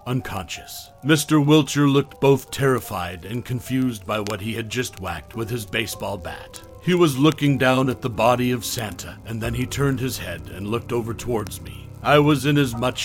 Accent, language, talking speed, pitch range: American, English, 200 wpm, 105-135 Hz